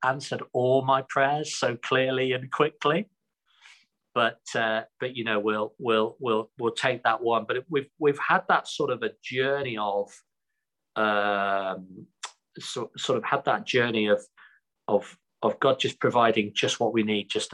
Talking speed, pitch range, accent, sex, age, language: 160 wpm, 110-130 Hz, British, male, 40-59, English